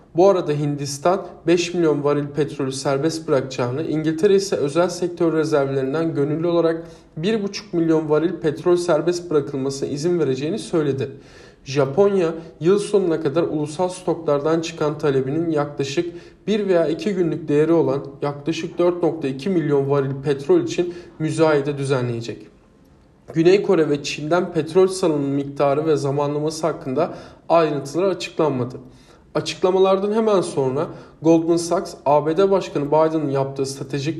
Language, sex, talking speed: Turkish, male, 125 wpm